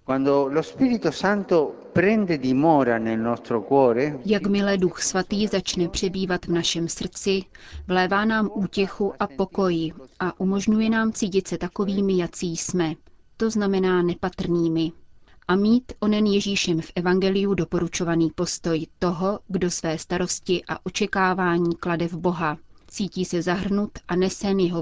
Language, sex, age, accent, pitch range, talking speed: Czech, female, 30-49, native, 170-200 Hz, 115 wpm